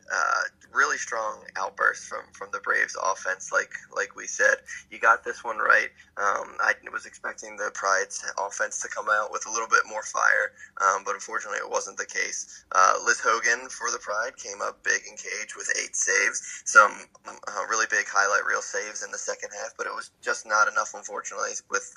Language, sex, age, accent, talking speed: English, male, 20-39, American, 200 wpm